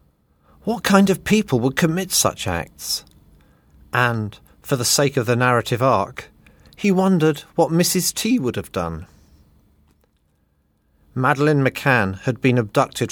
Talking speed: 135 wpm